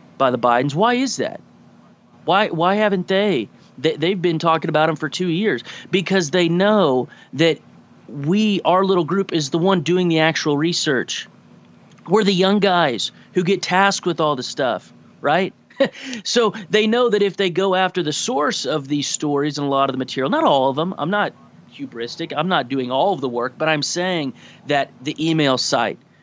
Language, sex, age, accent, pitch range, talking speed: English, male, 30-49, American, 135-180 Hz, 195 wpm